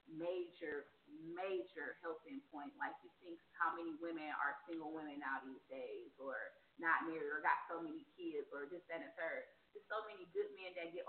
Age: 20-39